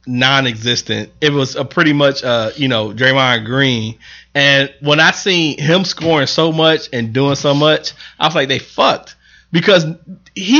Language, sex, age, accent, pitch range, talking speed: English, male, 30-49, American, 135-180 Hz, 170 wpm